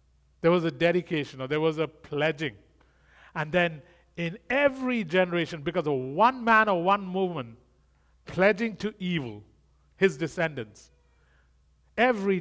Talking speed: 130 wpm